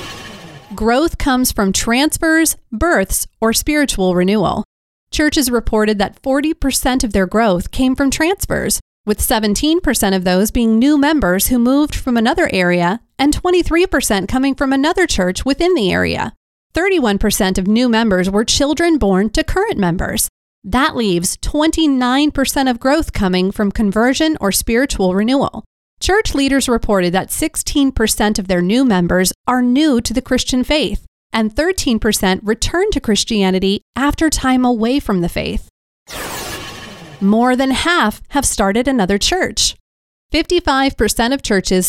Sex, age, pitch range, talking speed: female, 40-59, 210-295 Hz, 140 wpm